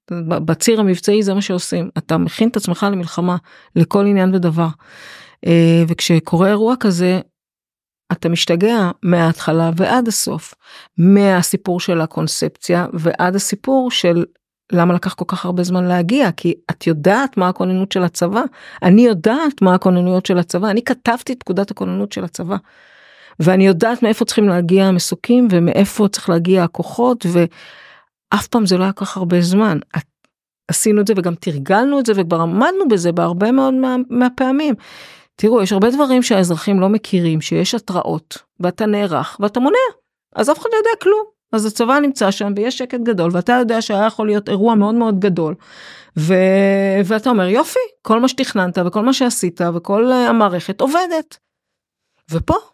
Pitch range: 175-235 Hz